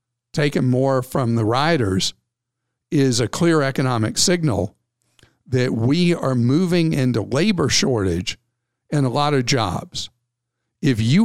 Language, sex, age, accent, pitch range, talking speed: English, male, 50-69, American, 120-150 Hz, 130 wpm